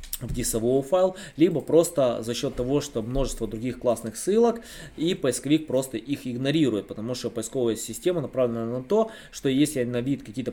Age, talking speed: 20-39, 170 wpm